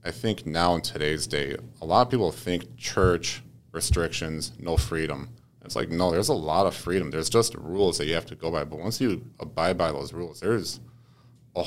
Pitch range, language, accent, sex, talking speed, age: 85-120 Hz, English, American, male, 215 wpm, 30-49